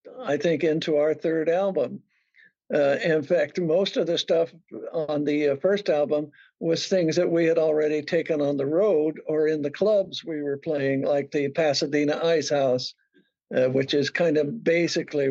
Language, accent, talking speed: English, American, 175 wpm